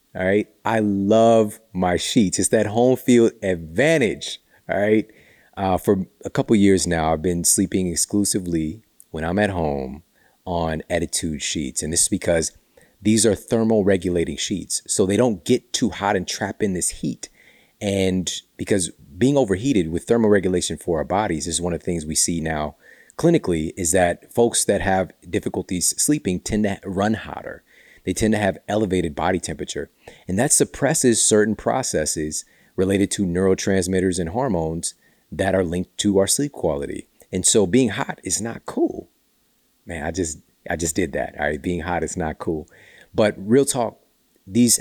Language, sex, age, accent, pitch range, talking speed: English, male, 30-49, American, 85-105 Hz, 175 wpm